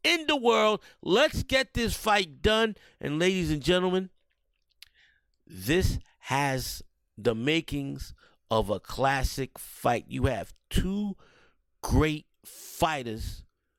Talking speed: 110 wpm